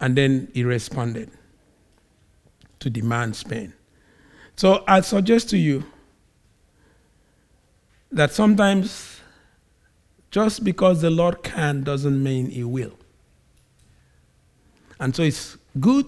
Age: 50-69